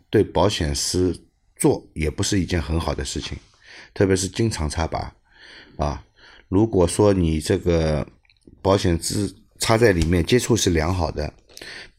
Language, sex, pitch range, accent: Chinese, male, 80-100 Hz, native